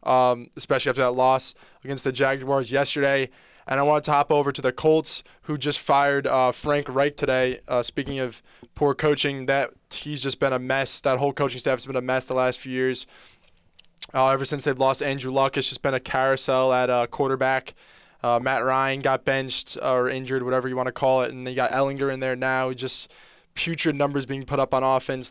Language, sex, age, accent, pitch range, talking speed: English, male, 20-39, American, 125-140 Hz, 215 wpm